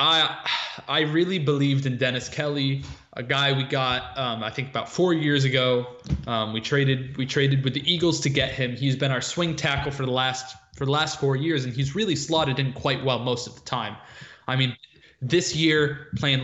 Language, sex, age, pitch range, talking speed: English, male, 20-39, 125-155 Hz, 210 wpm